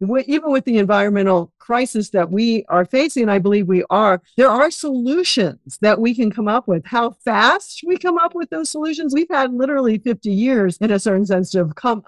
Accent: American